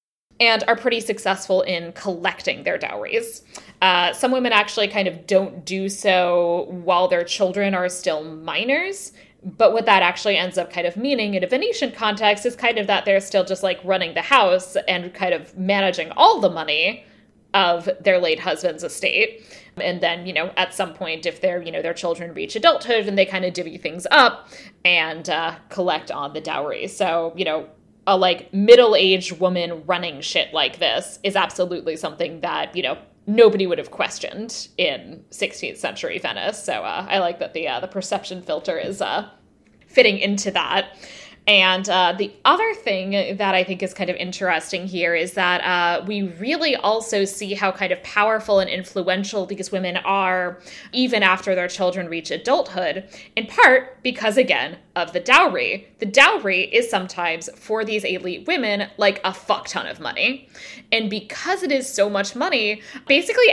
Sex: female